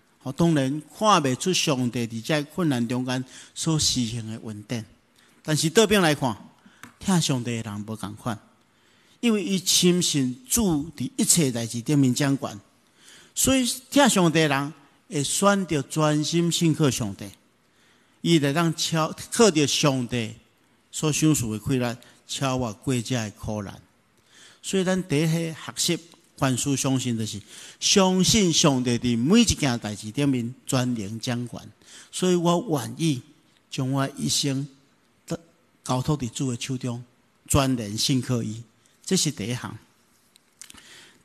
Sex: male